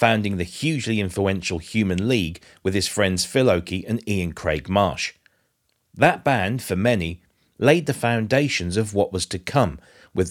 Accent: British